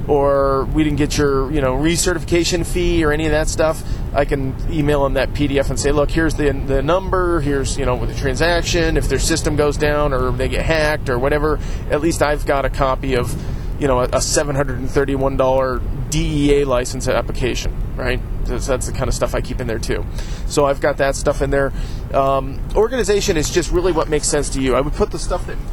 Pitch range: 130-160 Hz